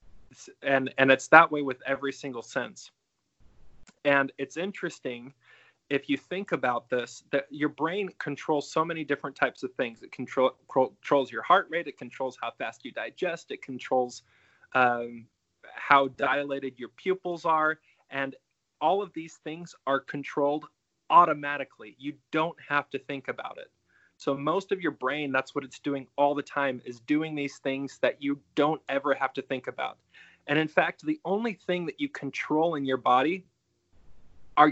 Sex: male